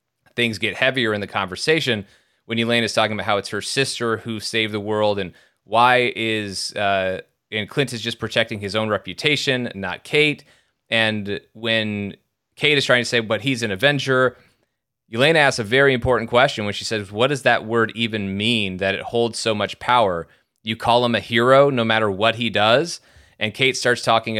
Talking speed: 195 wpm